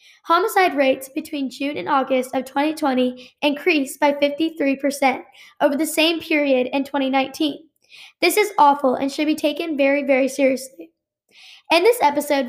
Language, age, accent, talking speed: English, 10-29, American, 145 wpm